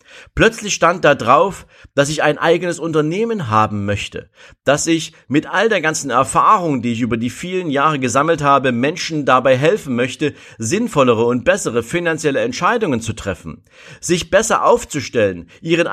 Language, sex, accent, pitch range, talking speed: German, male, German, 130-170 Hz, 155 wpm